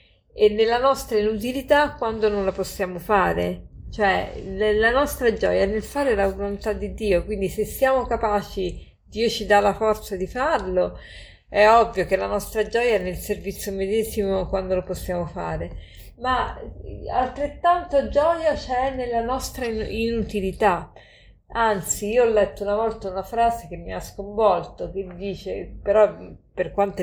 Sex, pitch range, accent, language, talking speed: female, 190-235 Hz, native, Italian, 150 wpm